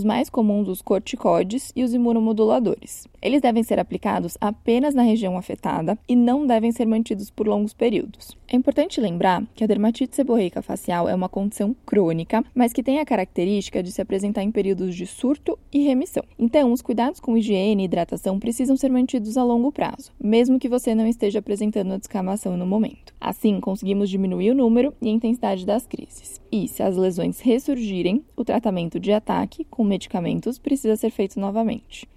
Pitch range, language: 195-240 Hz, Portuguese